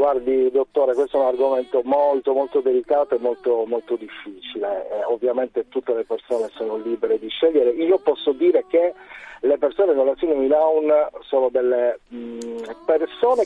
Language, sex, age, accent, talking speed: Italian, male, 40-59, native, 150 wpm